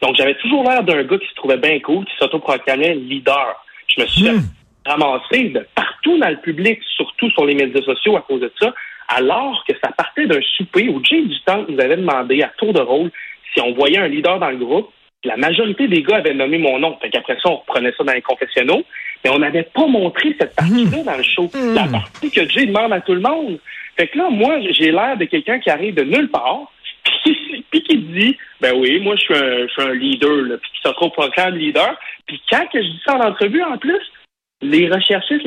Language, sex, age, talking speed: French, male, 40-59, 240 wpm